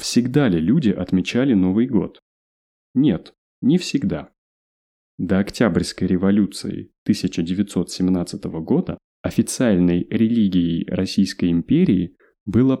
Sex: male